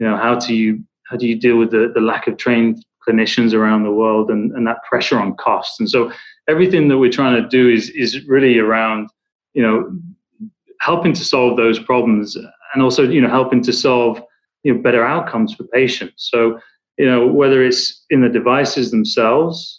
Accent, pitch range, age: British, 110-130 Hz, 20-39